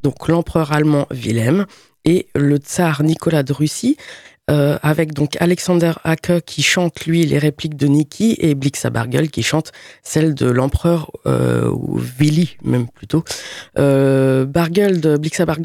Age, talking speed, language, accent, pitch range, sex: 20-39, 130 wpm, French, French, 145-180 Hz, female